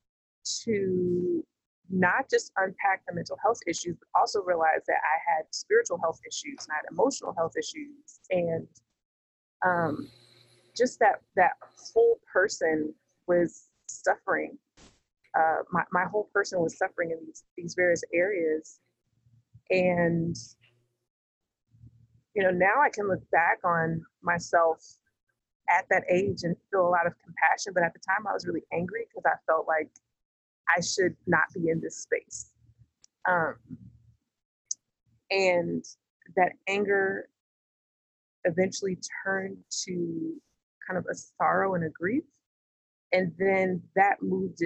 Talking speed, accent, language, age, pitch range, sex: 130 wpm, American, English, 30-49, 165-195 Hz, female